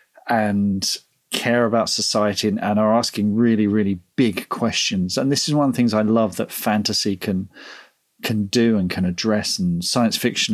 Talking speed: 175 wpm